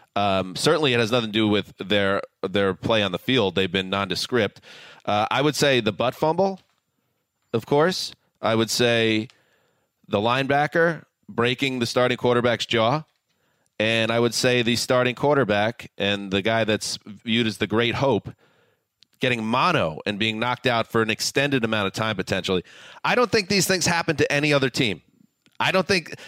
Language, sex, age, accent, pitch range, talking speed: English, male, 30-49, American, 110-145 Hz, 180 wpm